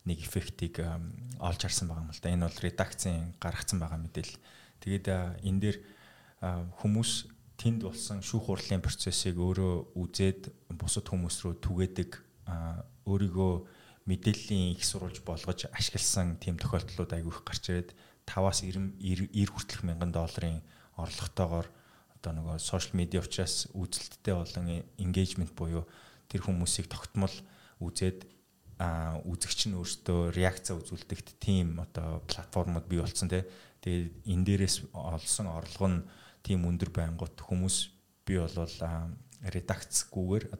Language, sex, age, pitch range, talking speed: English, male, 20-39, 85-100 Hz, 85 wpm